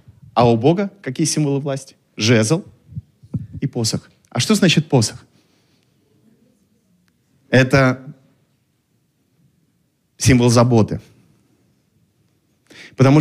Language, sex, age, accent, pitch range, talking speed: Russian, male, 30-49, native, 120-150 Hz, 75 wpm